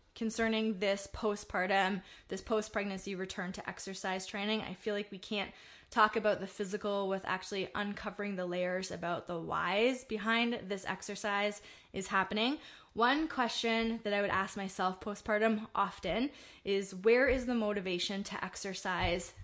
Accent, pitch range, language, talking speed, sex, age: American, 195-230 Hz, English, 145 wpm, female, 20-39